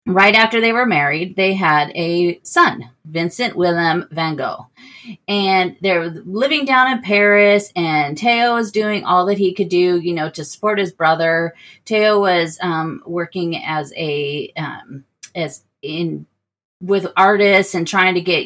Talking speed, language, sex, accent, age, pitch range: 160 wpm, English, female, American, 30-49, 170-205 Hz